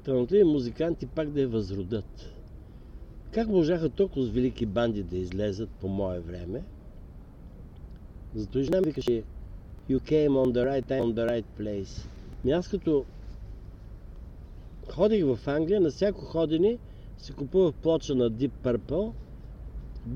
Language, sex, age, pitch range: Bulgarian, male, 60-79, 100-160 Hz